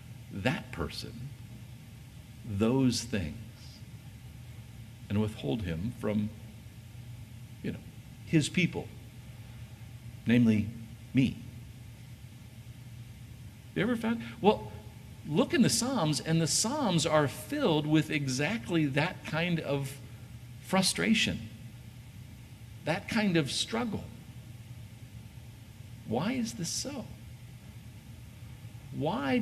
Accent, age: American, 60-79